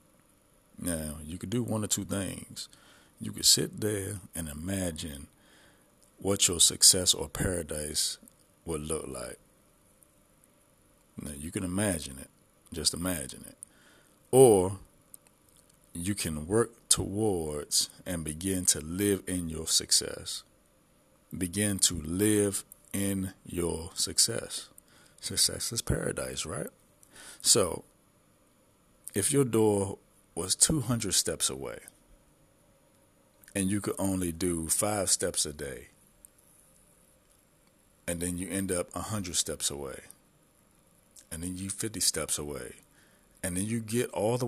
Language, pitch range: English, 85-105 Hz